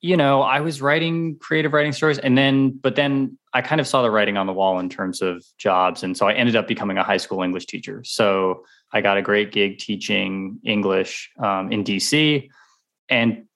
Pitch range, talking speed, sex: 95-125 Hz, 210 wpm, male